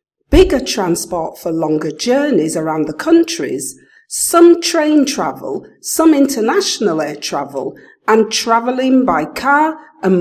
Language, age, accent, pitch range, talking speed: English, 50-69, British, 215-335 Hz, 120 wpm